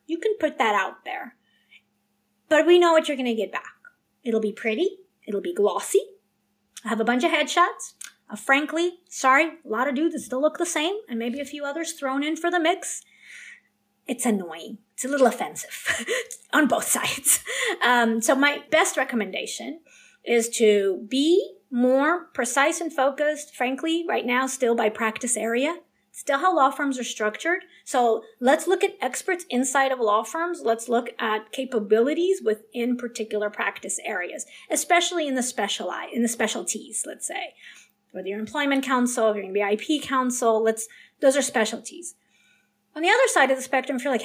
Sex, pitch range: female, 225-315 Hz